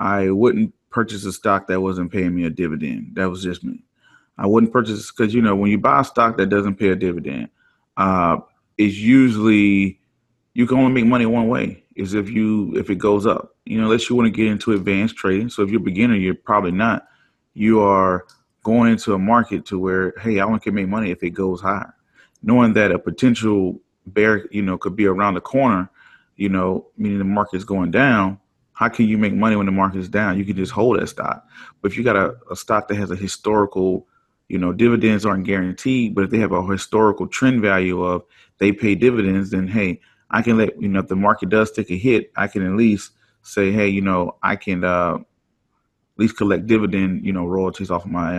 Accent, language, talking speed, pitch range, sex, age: American, English, 225 wpm, 95-110 Hz, male, 30-49